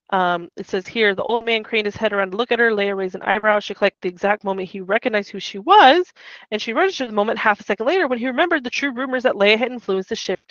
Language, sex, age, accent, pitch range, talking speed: English, female, 20-39, American, 180-225 Hz, 290 wpm